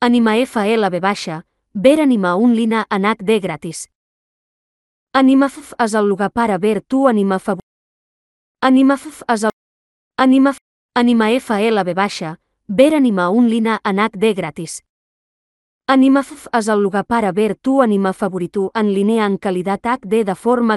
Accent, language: Spanish, English